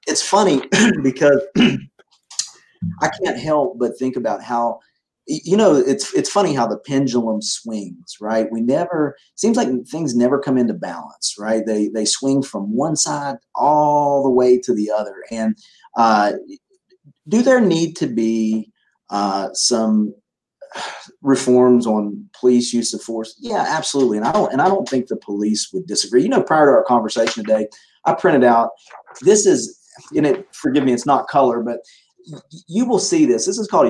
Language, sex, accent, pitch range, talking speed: English, male, American, 110-140 Hz, 175 wpm